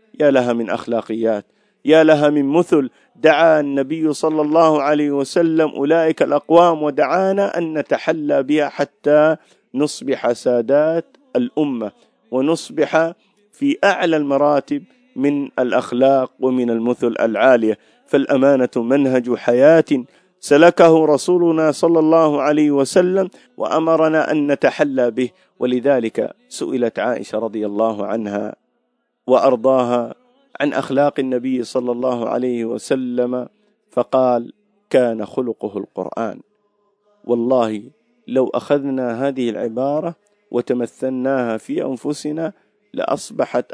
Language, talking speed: Arabic, 100 wpm